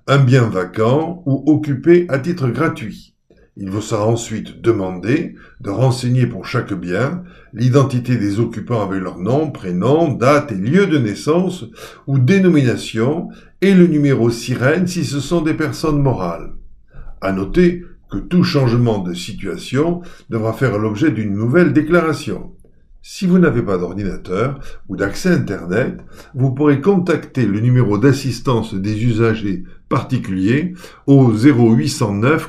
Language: French